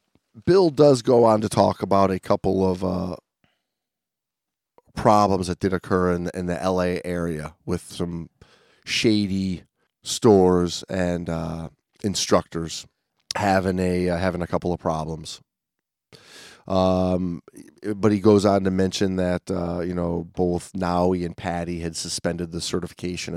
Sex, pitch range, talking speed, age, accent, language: male, 85-105 Hz, 140 wpm, 30-49, American, English